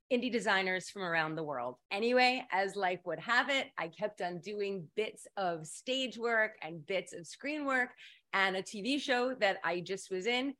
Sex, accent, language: female, American, English